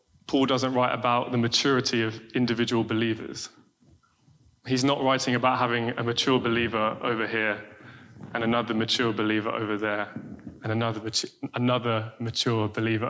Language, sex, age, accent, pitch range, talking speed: English, male, 20-39, British, 115-135 Hz, 135 wpm